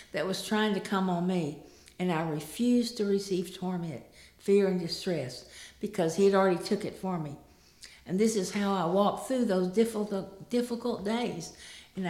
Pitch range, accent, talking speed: 155-205 Hz, American, 180 wpm